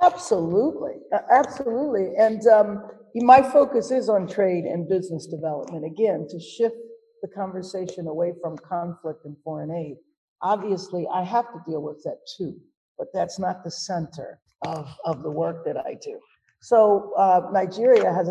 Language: English